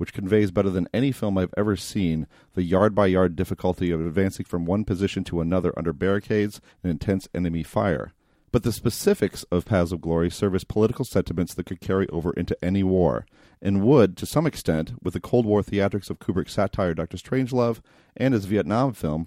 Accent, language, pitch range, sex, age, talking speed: American, English, 90-110 Hz, male, 40-59, 195 wpm